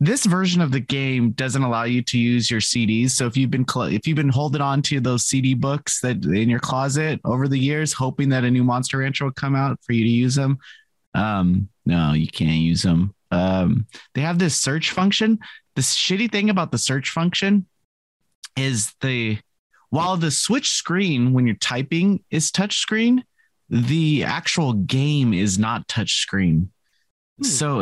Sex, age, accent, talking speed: male, 30-49, American, 185 wpm